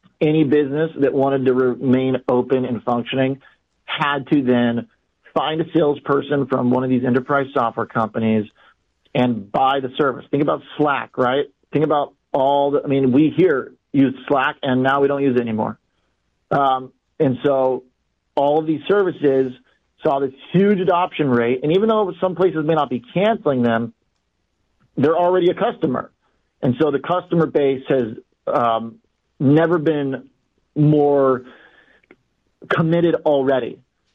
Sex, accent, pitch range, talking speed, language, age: male, American, 125-155 Hz, 150 wpm, English, 40-59